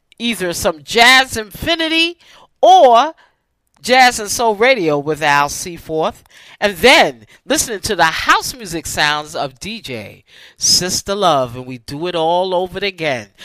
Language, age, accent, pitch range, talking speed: English, 40-59, American, 140-220 Hz, 140 wpm